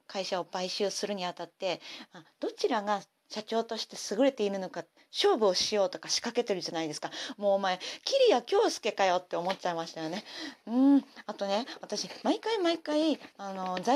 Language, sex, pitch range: Japanese, female, 185-265 Hz